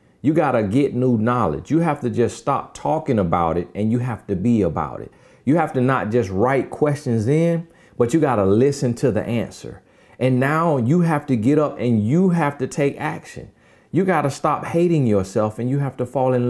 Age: 40-59